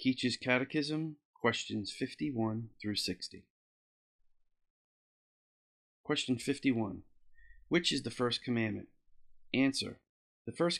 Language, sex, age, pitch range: English, male, 30-49, 105-130 Hz